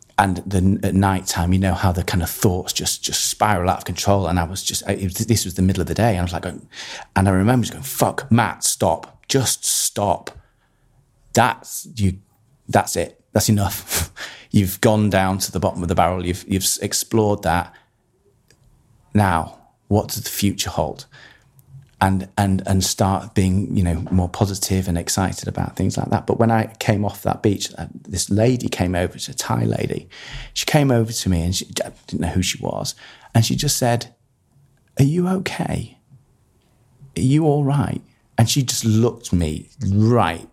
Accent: British